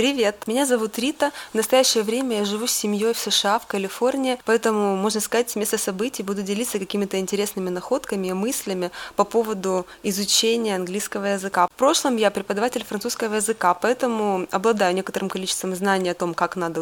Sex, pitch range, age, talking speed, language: female, 195-230 Hz, 20-39, 170 wpm, Russian